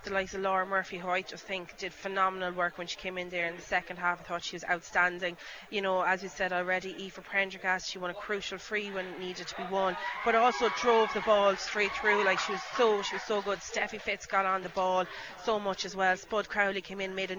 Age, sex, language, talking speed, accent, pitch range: 30-49, female, English, 260 wpm, Irish, 175-200 Hz